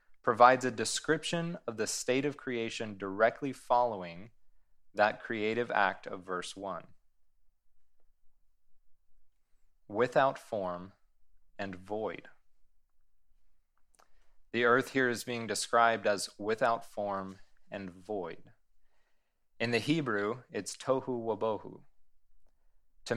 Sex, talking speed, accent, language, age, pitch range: male, 100 wpm, American, English, 30-49, 90-120 Hz